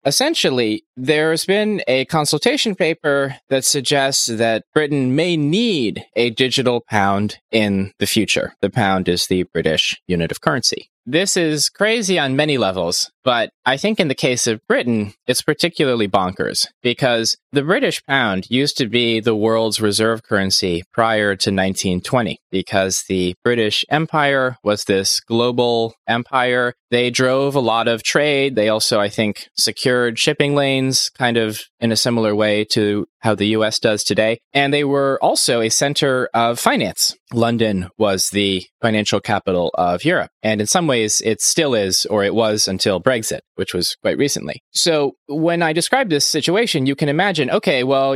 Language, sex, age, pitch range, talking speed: English, male, 20-39, 105-140 Hz, 165 wpm